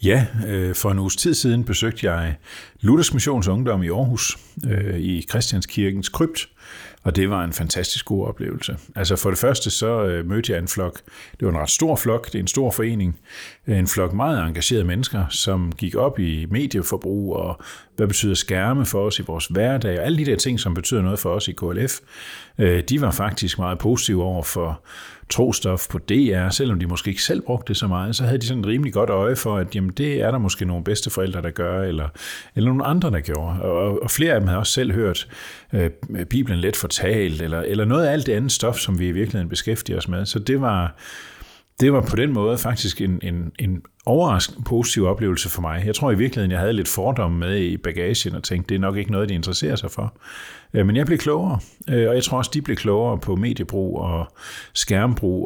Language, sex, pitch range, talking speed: Danish, male, 90-120 Hz, 220 wpm